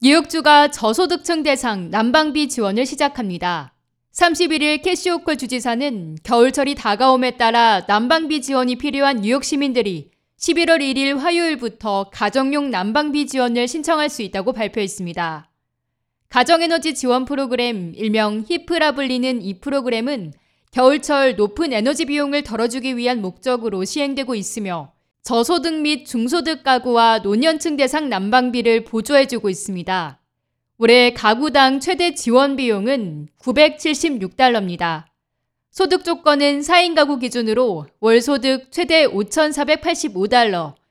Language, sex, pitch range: Korean, female, 220-300 Hz